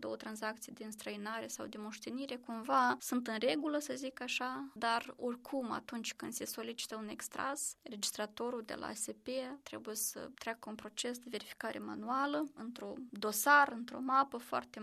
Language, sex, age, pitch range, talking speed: Romanian, female, 20-39, 220-260 Hz, 160 wpm